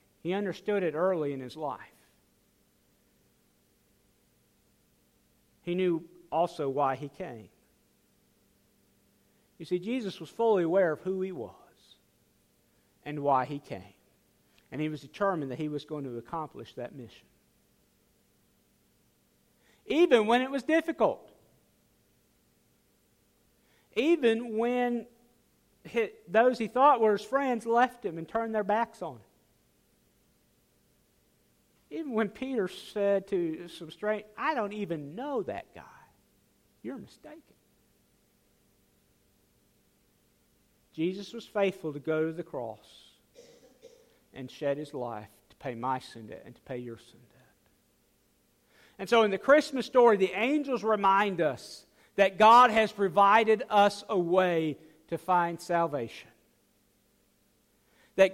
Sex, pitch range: male, 160-230 Hz